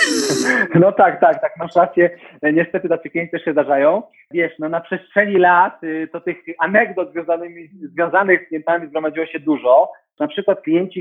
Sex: male